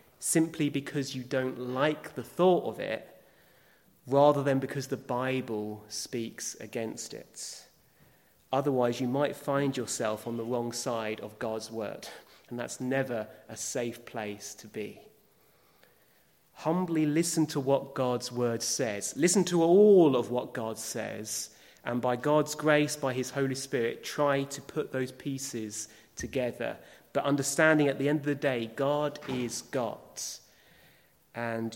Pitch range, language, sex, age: 115-145 Hz, English, male, 30-49